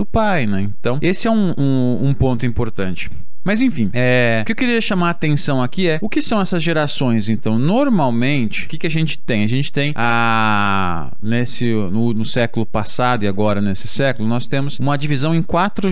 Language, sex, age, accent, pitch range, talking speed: Portuguese, male, 20-39, Brazilian, 120-170 Hz, 195 wpm